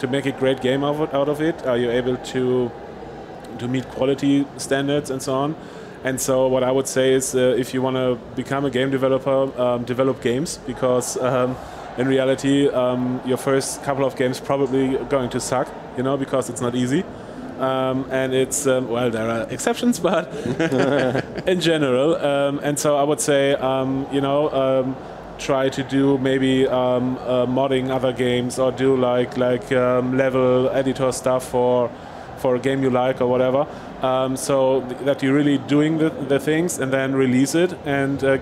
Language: German